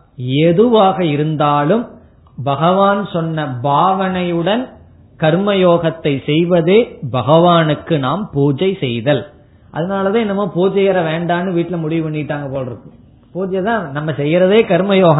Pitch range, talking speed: 150-195 Hz, 85 wpm